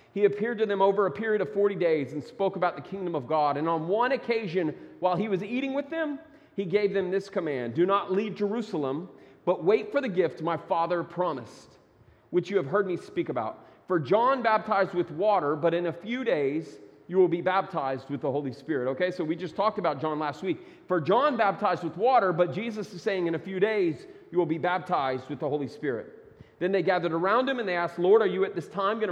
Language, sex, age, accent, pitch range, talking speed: English, male, 30-49, American, 155-205 Hz, 235 wpm